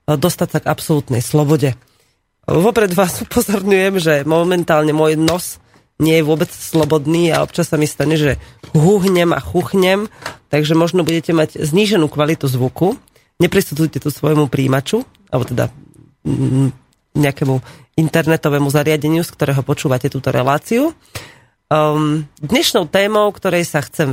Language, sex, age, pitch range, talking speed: Slovak, female, 30-49, 150-180 Hz, 125 wpm